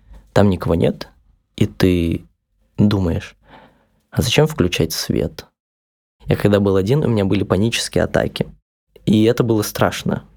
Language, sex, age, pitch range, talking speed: Russian, male, 20-39, 95-110 Hz, 135 wpm